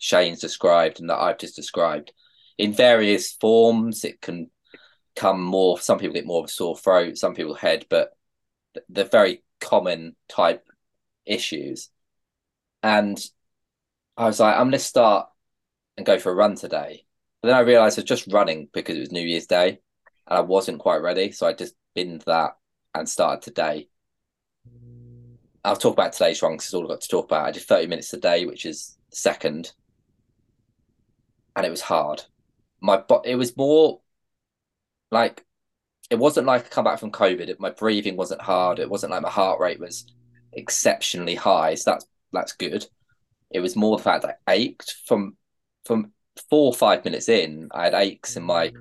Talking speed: 180 wpm